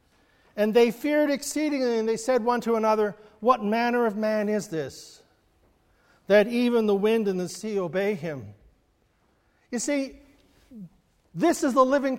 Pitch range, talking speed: 165-245 Hz, 155 wpm